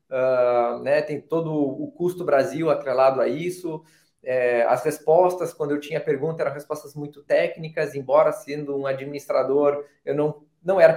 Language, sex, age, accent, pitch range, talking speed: Portuguese, male, 20-39, Brazilian, 140-175 Hz, 160 wpm